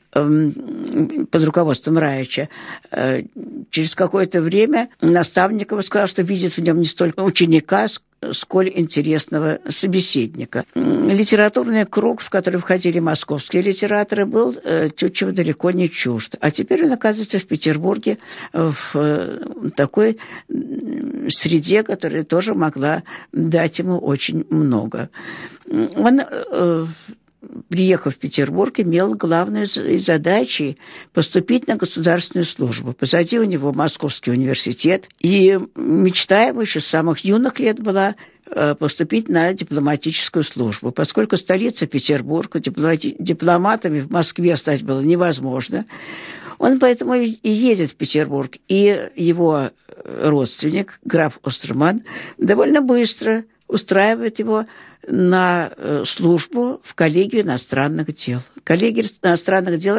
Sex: female